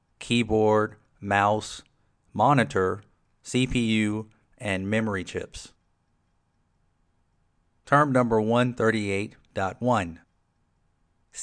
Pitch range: 95-125 Hz